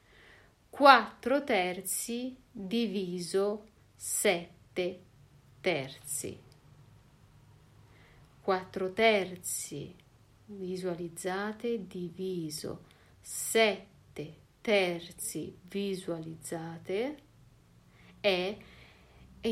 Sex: female